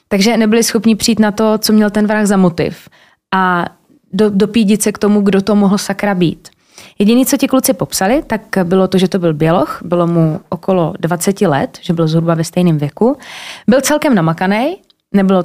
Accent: native